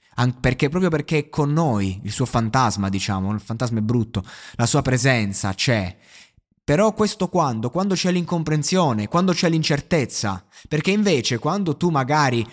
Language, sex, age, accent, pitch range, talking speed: Italian, male, 20-39, native, 120-170 Hz, 155 wpm